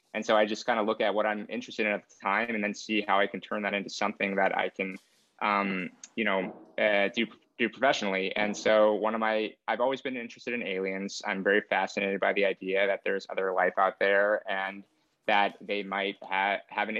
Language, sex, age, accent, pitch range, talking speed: English, male, 20-39, American, 100-120 Hz, 230 wpm